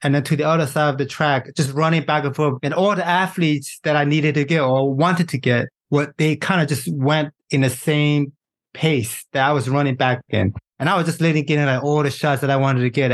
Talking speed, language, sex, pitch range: 260 wpm, English, male, 125-150 Hz